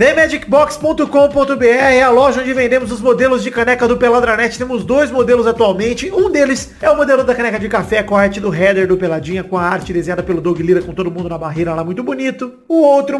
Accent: Brazilian